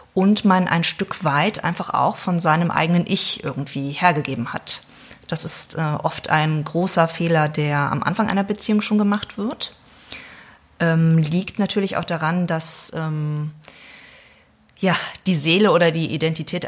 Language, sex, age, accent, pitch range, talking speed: German, female, 30-49, German, 155-185 Hz, 150 wpm